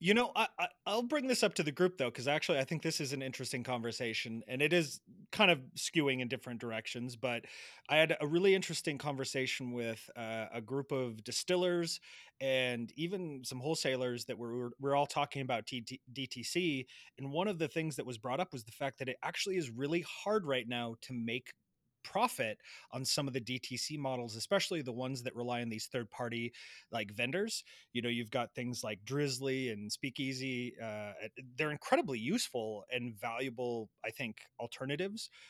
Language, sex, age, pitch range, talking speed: English, male, 30-49, 120-145 Hz, 195 wpm